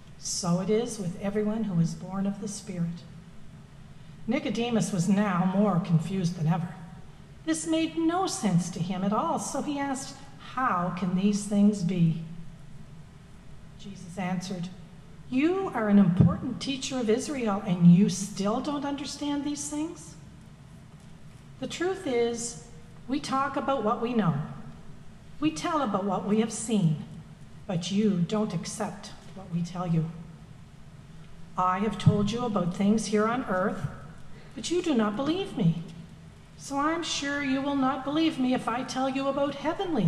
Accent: American